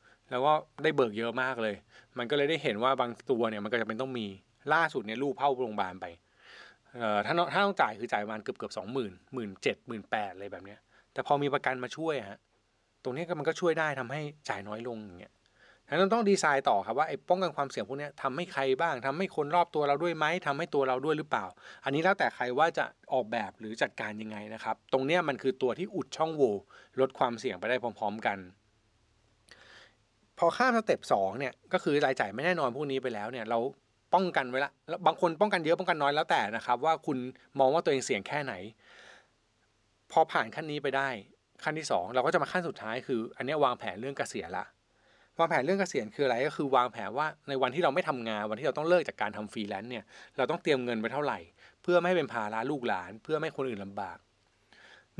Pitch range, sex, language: 115-155 Hz, male, Thai